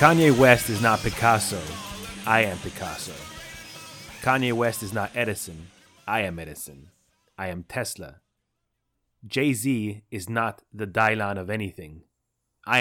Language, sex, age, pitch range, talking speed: English, male, 30-49, 100-120 Hz, 125 wpm